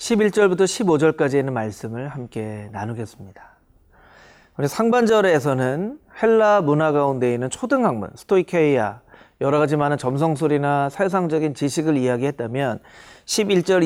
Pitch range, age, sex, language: 140-205 Hz, 40-59, male, Korean